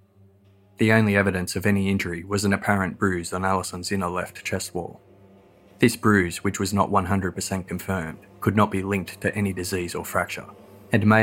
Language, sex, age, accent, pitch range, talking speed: English, male, 20-39, Australian, 90-100 Hz, 180 wpm